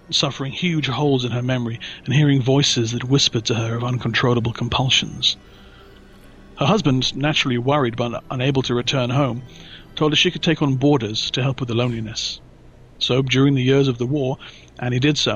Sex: male